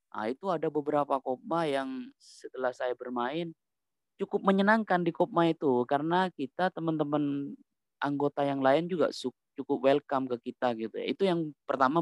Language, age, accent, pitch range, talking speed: Indonesian, 20-39, native, 135-175 Hz, 145 wpm